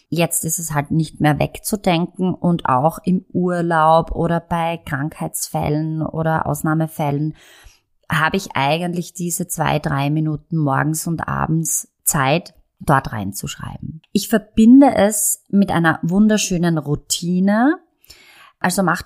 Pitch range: 155-195 Hz